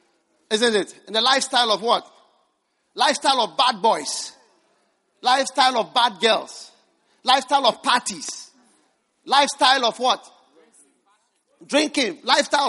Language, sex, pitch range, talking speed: English, male, 265-355 Hz, 110 wpm